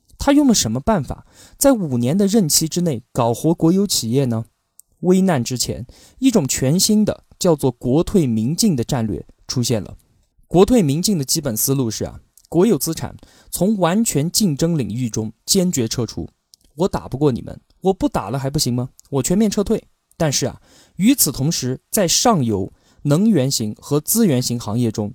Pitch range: 120-180 Hz